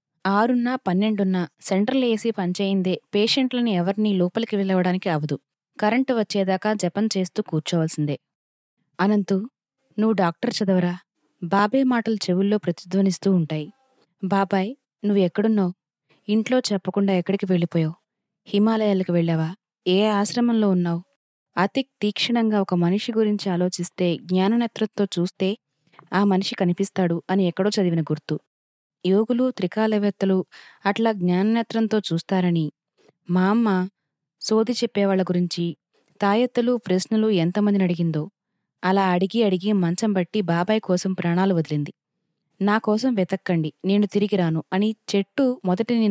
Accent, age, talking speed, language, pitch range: native, 20-39, 110 wpm, Telugu, 180-215 Hz